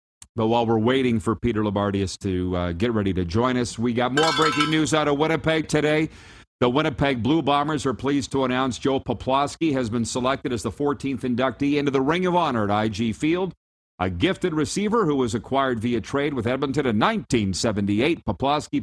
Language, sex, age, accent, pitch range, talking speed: English, male, 50-69, American, 110-140 Hz, 195 wpm